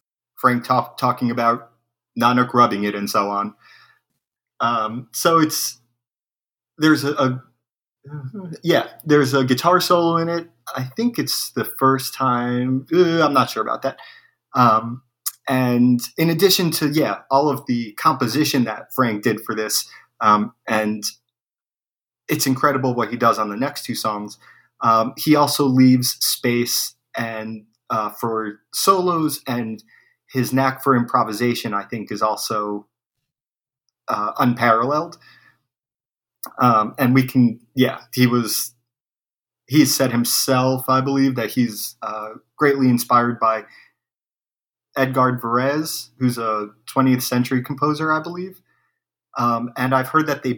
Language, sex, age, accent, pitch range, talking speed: English, male, 30-49, American, 115-140 Hz, 135 wpm